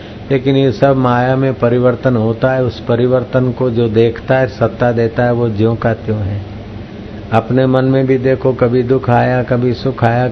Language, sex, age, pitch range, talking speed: Hindi, male, 50-69, 105-130 Hz, 190 wpm